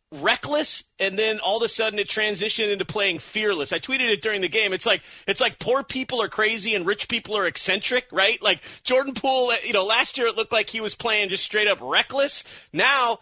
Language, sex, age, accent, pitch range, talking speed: English, male, 30-49, American, 175-225 Hz, 225 wpm